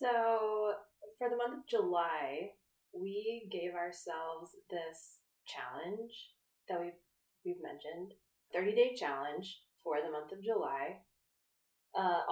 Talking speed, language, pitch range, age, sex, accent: 115 wpm, English, 170-250 Hz, 20-39, female, American